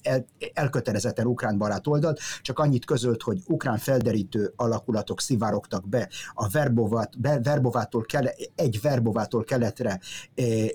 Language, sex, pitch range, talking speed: Hungarian, male, 110-140 Hz, 125 wpm